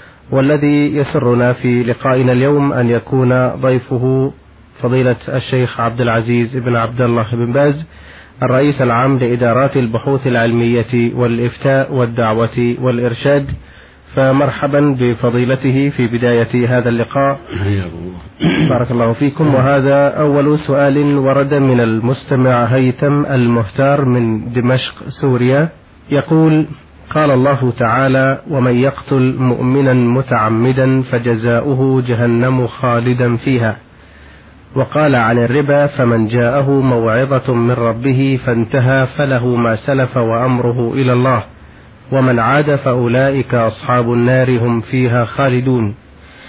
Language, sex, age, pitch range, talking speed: Arabic, male, 30-49, 120-135 Hz, 100 wpm